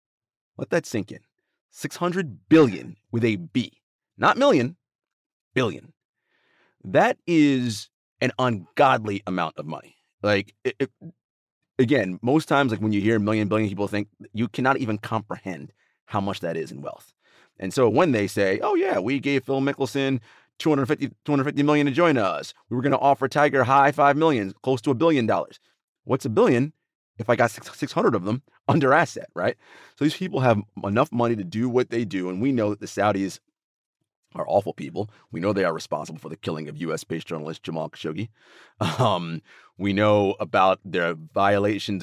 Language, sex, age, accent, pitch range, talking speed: English, male, 30-49, American, 100-140 Hz, 175 wpm